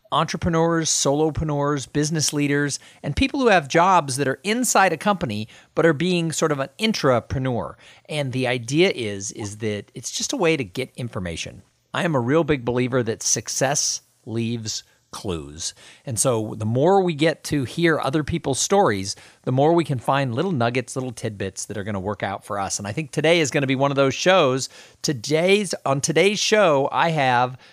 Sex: male